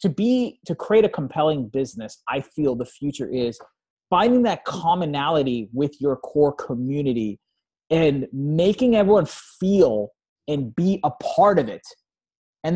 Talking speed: 140 wpm